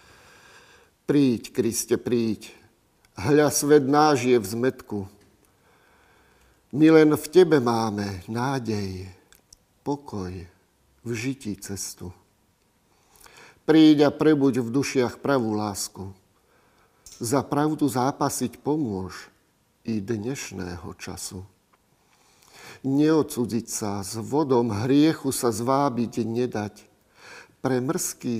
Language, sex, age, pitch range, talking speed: Slovak, male, 50-69, 100-135 Hz, 85 wpm